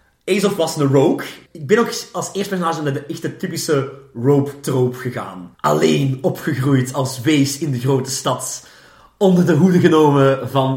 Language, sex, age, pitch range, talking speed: Dutch, male, 30-49, 130-175 Hz, 165 wpm